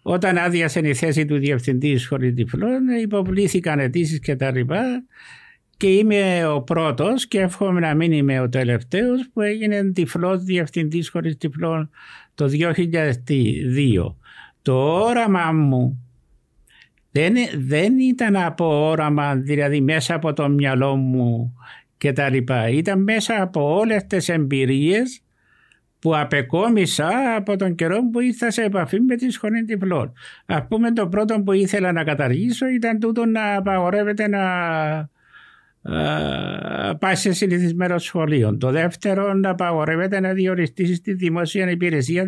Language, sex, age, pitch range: Greek, male, 60-79, 145-200 Hz